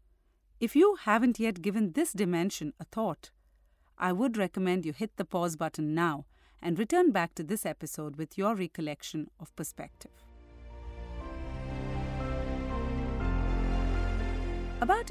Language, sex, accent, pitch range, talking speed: English, female, Indian, 160-235 Hz, 120 wpm